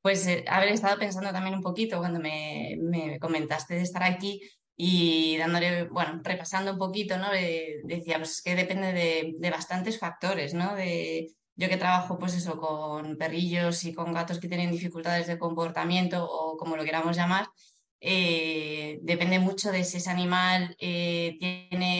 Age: 20-39